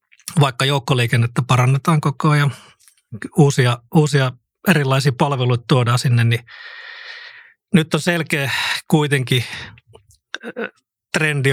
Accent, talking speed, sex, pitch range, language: native, 90 wpm, male, 125-160 Hz, Finnish